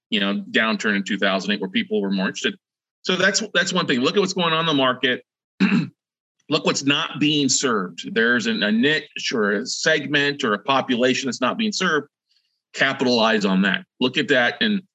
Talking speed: 205 wpm